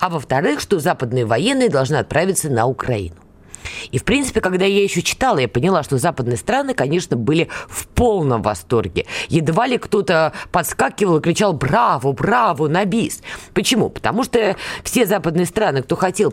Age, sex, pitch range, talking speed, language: 20-39, female, 135-195 Hz, 160 wpm, Russian